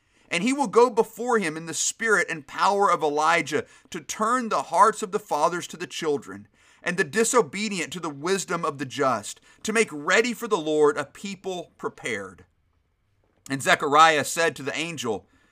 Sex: male